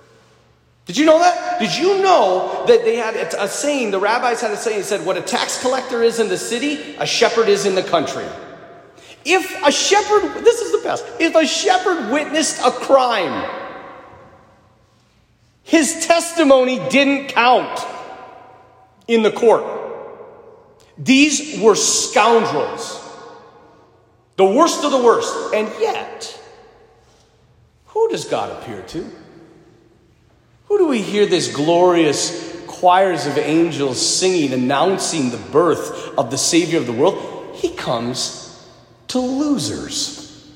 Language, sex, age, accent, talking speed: English, male, 40-59, American, 135 wpm